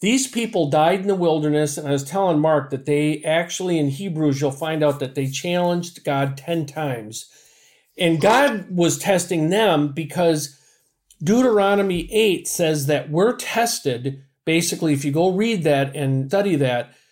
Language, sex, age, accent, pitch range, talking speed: English, male, 50-69, American, 150-210 Hz, 160 wpm